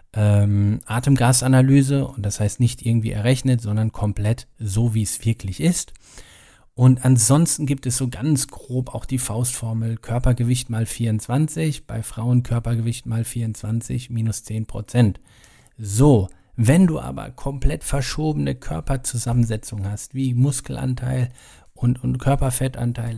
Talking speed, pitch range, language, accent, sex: 125 wpm, 110-130 Hz, German, German, male